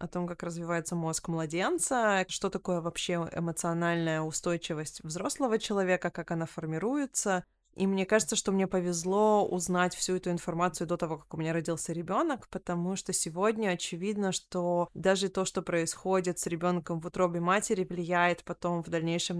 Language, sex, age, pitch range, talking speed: Russian, female, 20-39, 175-205 Hz, 160 wpm